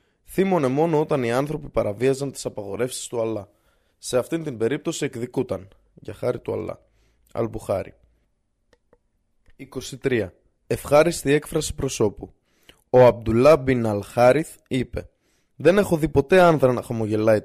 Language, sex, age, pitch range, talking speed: Greek, male, 20-39, 115-155 Hz, 125 wpm